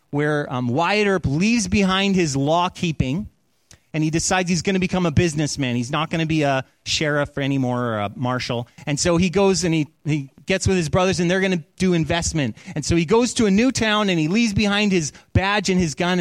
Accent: American